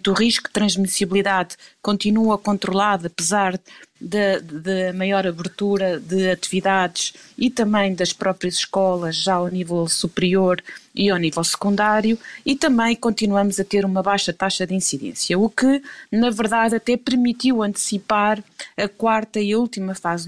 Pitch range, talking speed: 185-210 Hz, 140 wpm